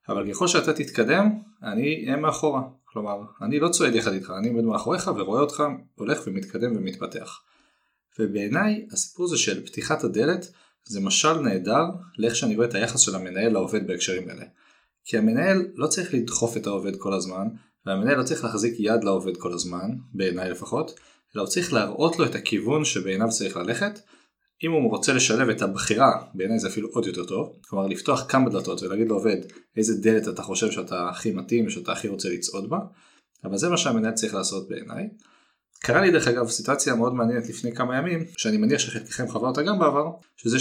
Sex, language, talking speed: male, Hebrew, 185 wpm